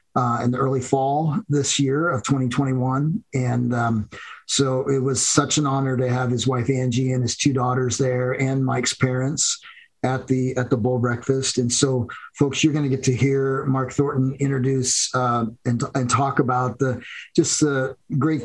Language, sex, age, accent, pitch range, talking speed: English, male, 40-59, American, 120-135 Hz, 185 wpm